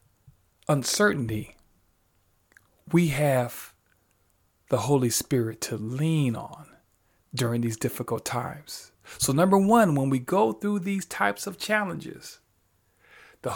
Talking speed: 110 wpm